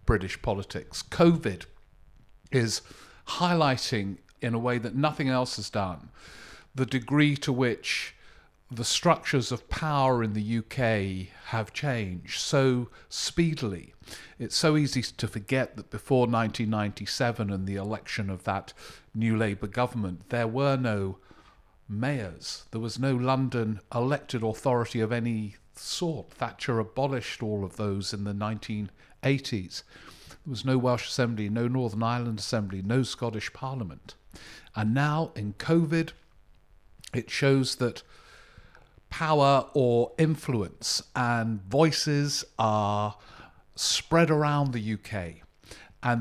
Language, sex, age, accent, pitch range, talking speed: English, male, 50-69, British, 105-130 Hz, 125 wpm